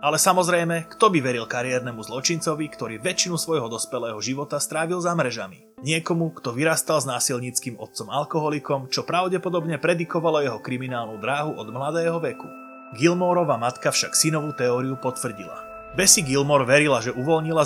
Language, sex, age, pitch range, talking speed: Slovak, male, 30-49, 125-160 Hz, 145 wpm